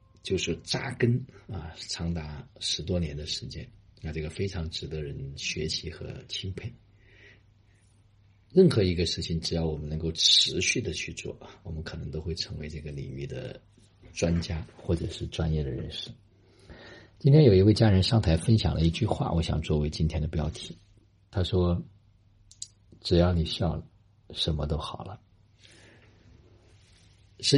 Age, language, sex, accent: 50-69, Chinese, male, native